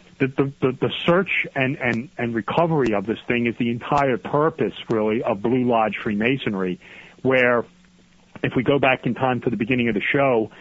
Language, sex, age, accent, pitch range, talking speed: English, male, 40-59, American, 110-130 Hz, 185 wpm